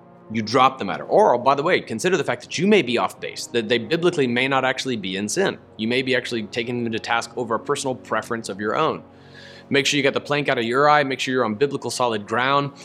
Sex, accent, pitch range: male, American, 120-145 Hz